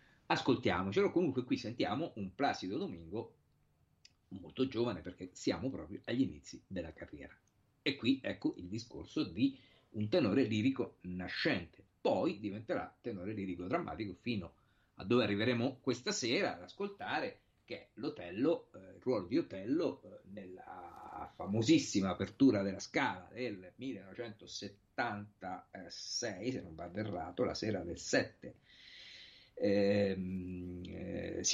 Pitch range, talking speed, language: 95-120 Hz, 115 wpm, Italian